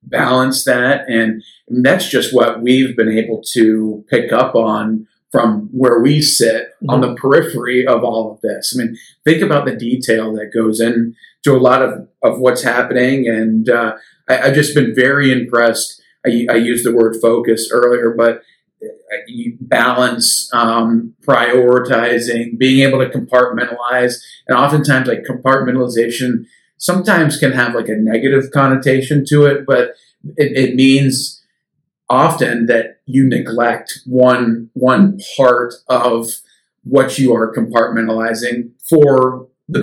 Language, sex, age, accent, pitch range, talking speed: English, male, 40-59, American, 115-135 Hz, 145 wpm